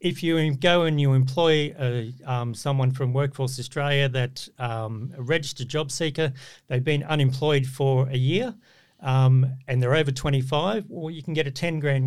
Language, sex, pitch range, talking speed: English, male, 125-150 Hz, 185 wpm